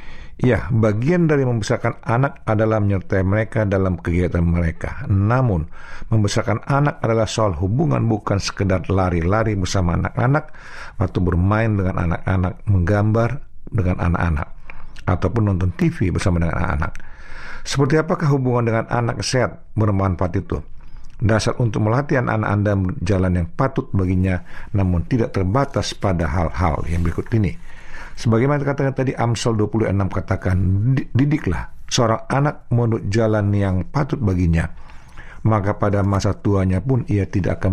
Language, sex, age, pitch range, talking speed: Indonesian, male, 50-69, 95-125 Hz, 130 wpm